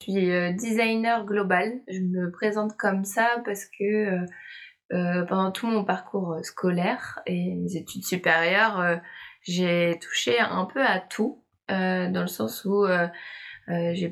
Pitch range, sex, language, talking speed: 175-205 Hz, female, French, 130 wpm